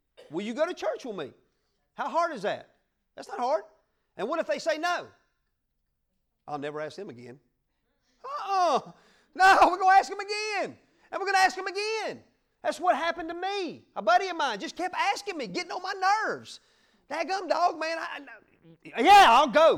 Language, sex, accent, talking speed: English, male, American, 195 wpm